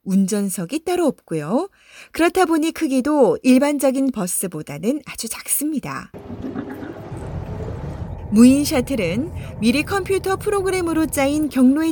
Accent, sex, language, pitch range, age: native, female, Korean, 215-315 Hz, 30-49